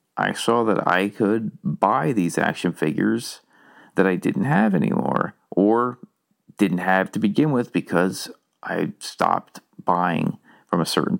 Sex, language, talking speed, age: male, English, 145 wpm, 40-59